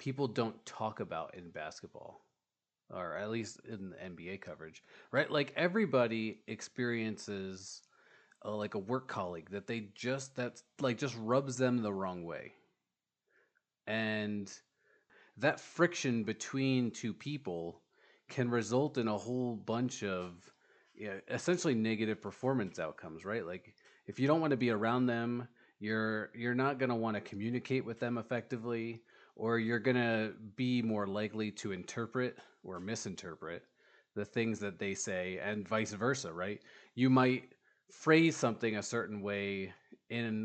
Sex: male